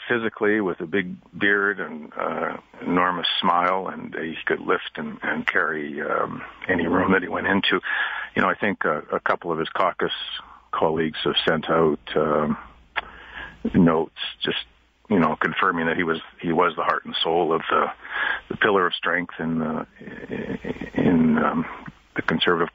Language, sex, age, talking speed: English, male, 50-69, 170 wpm